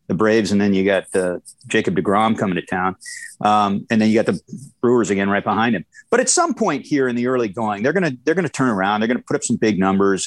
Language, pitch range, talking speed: English, 105-160 Hz, 285 wpm